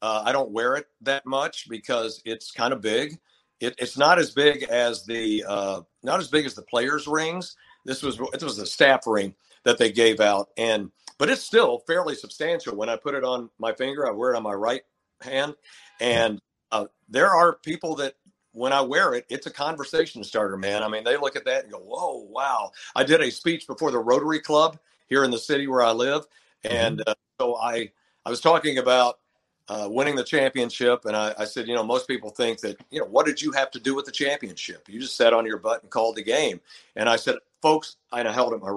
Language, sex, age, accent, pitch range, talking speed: English, male, 50-69, American, 115-150 Hz, 230 wpm